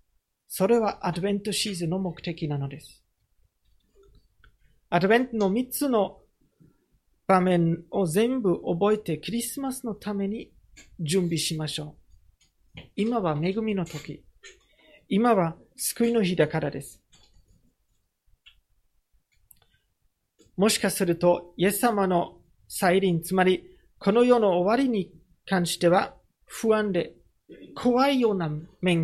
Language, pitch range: Japanese, 160-230 Hz